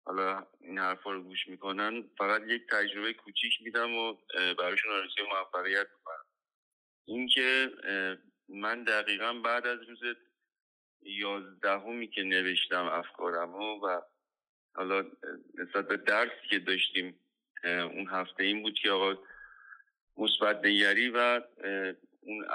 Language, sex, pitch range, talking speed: Persian, male, 95-115 Hz, 115 wpm